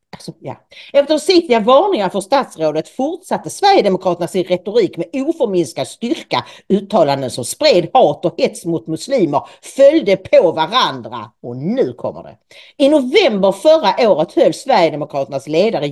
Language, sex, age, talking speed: English, female, 50-69, 130 wpm